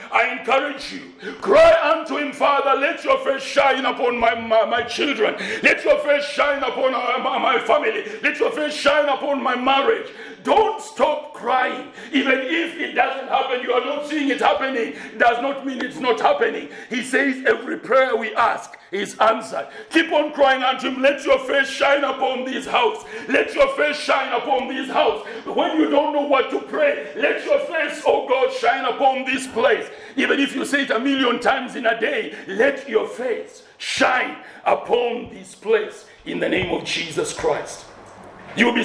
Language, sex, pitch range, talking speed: English, male, 260-415 Hz, 185 wpm